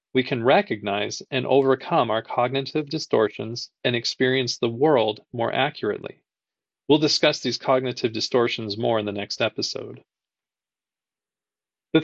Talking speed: 125 wpm